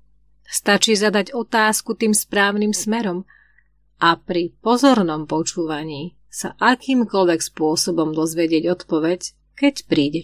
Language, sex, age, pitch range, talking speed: Slovak, female, 30-49, 155-210 Hz, 100 wpm